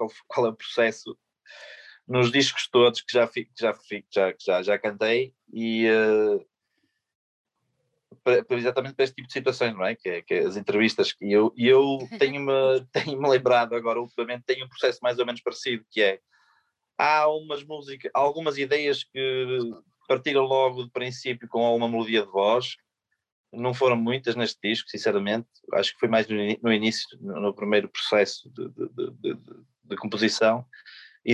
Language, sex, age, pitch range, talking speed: Portuguese, male, 20-39, 115-140 Hz, 170 wpm